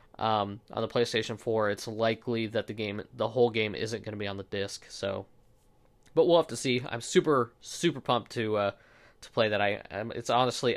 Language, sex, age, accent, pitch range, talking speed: English, male, 20-39, American, 110-125 Hz, 205 wpm